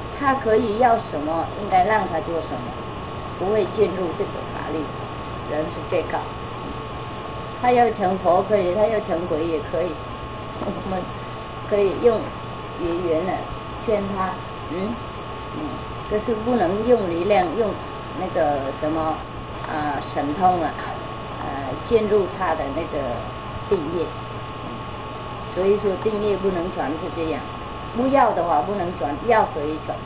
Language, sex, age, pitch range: English, female, 30-49, 145-220 Hz